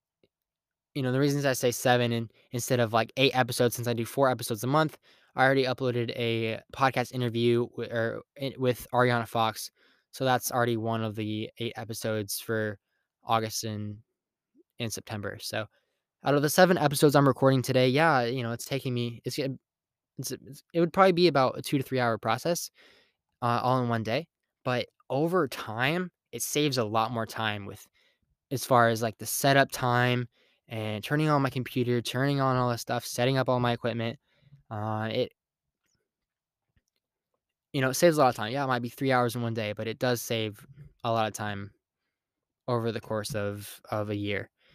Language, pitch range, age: English, 110-135 Hz, 10-29